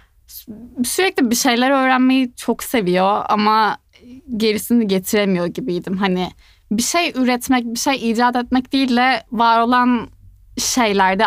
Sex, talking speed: female, 120 wpm